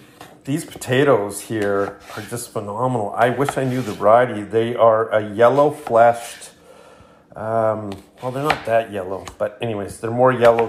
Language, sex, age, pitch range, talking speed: English, male, 40-59, 105-120 Hz, 145 wpm